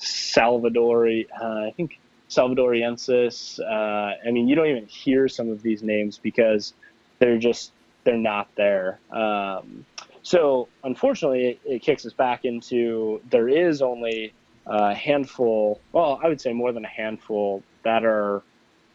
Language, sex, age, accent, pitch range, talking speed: English, male, 20-39, American, 110-120 Hz, 145 wpm